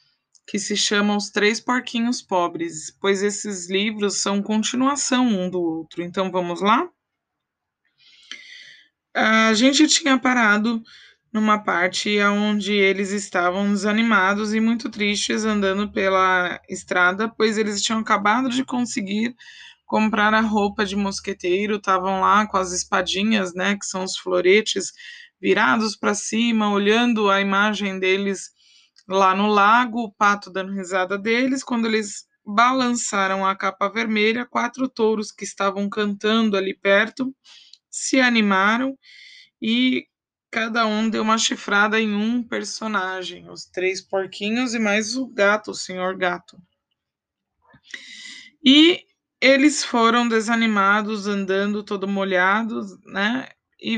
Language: Portuguese